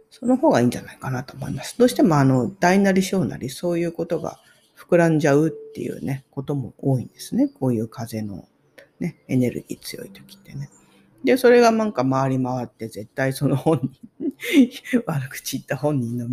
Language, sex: Japanese, female